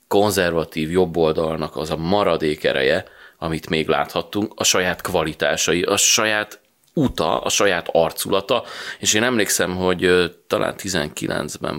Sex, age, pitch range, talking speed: male, 30-49, 80-95 Hz, 120 wpm